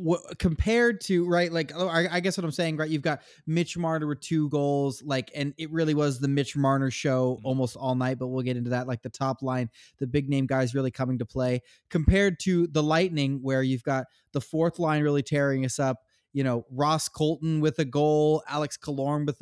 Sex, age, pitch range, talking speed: male, 20-39, 125-155 Hz, 225 wpm